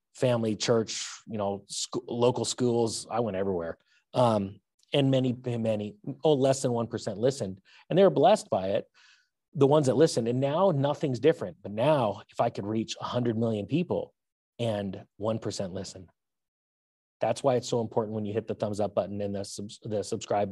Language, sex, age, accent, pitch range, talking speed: English, male, 30-49, American, 110-135 Hz, 175 wpm